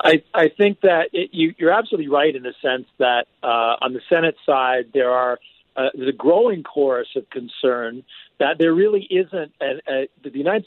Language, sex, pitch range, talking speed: English, male, 140-175 Hz, 195 wpm